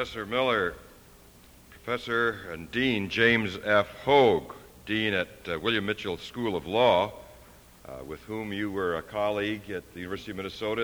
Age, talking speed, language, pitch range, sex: 60-79, 155 wpm, English, 95-130 Hz, male